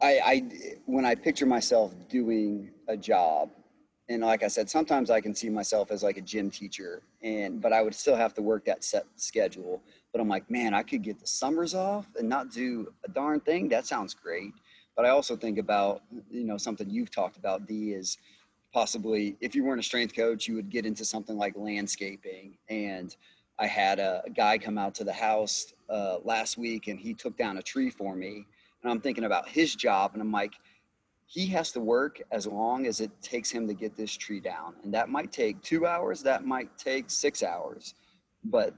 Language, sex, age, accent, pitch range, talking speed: English, male, 30-49, American, 100-120 Hz, 215 wpm